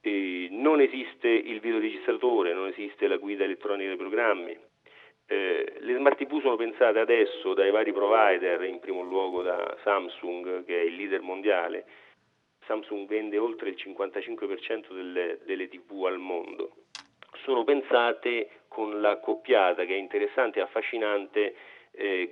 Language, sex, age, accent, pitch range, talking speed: Italian, male, 40-59, native, 340-435 Hz, 140 wpm